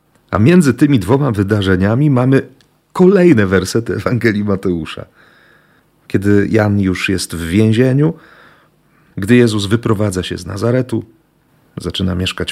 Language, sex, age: Polish, male, 40-59